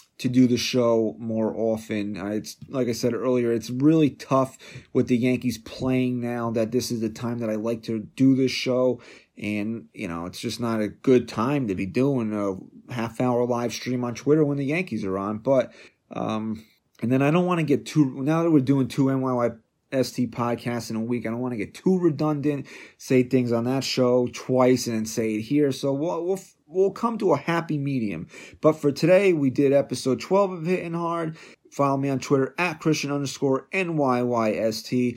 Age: 30-49